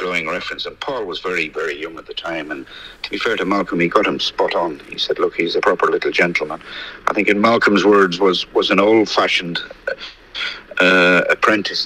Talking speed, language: 210 wpm, English